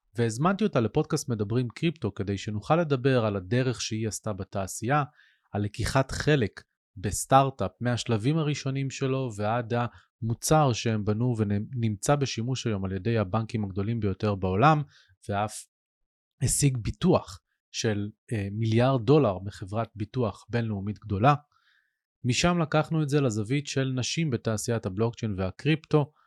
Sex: male